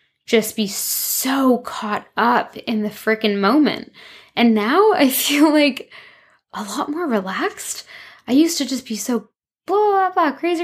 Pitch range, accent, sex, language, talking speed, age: 200-250 Hz, American, female, English, 160 wpm, 10-29